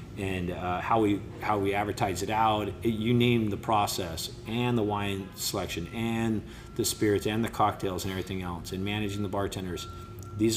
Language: English